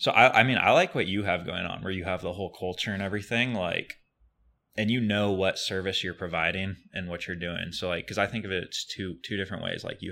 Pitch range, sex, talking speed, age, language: 85-100 Hz, male, 265 wpm, 20-39, English